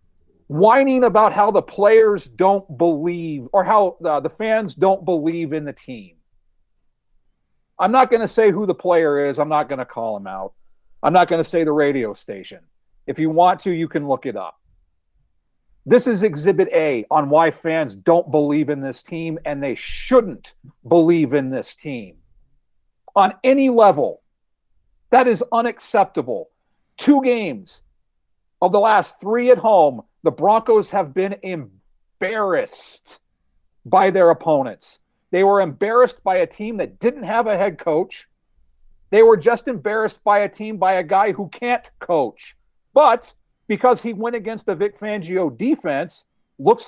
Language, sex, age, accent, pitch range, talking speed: English, male, 50-69, American, 155-225 Hz, 160 wpm